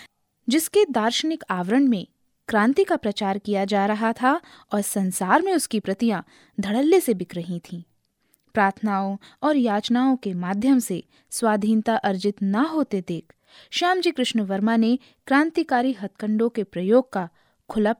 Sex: female